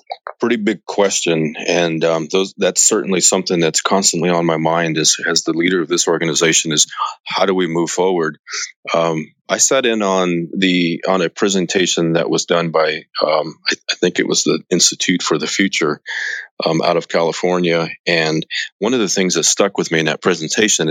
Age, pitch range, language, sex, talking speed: 30-49, 80-90 Hz, English, male, 190 wpm